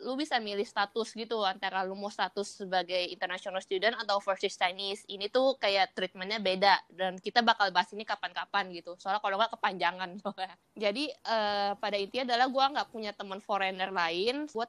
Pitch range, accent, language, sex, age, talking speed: 190-225 Hz, native, Indonesian, female, 20-39, 175 wpm